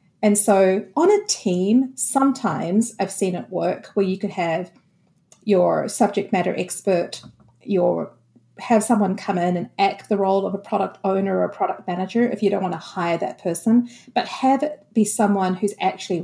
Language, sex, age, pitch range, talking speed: English, female, 40-59, 190-225 Hz, 185 wpm